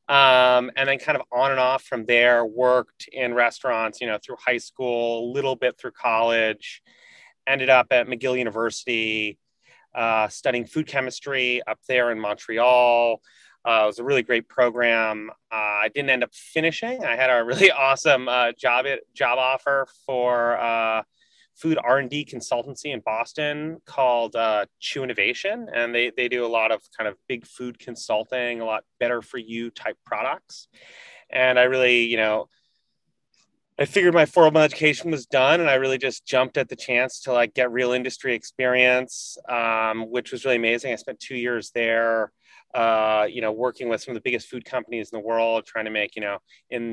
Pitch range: 115-135 Hz